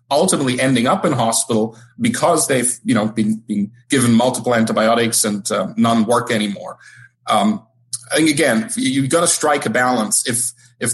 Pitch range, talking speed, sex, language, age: 120-140 Hz, 165 wpm, male, English, 40-59